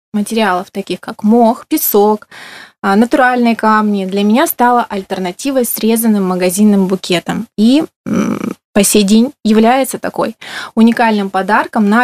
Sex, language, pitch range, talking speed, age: female, Russian, 200-235 Hz, 115 wpm, 20-39